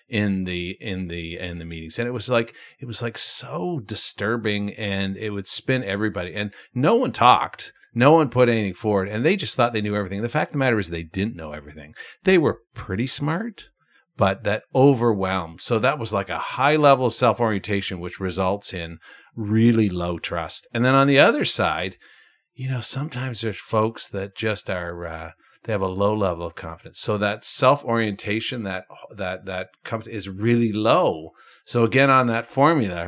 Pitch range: 95-120 Hz